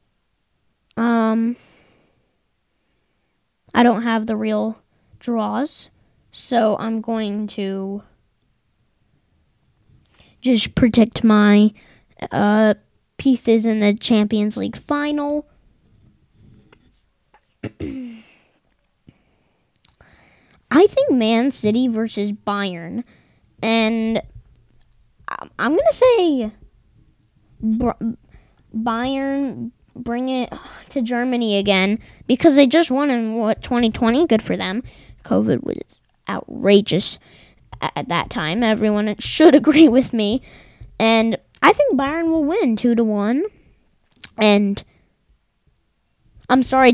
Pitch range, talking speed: 215-260 Hz, 90 wpm